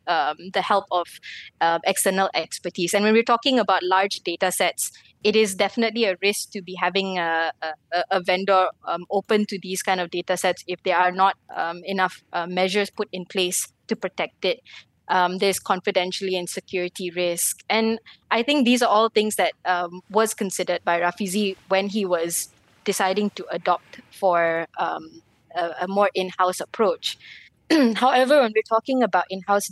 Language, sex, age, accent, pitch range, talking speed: English, female, 20-39, Malaysian, 180-210 Hz, 175 wpm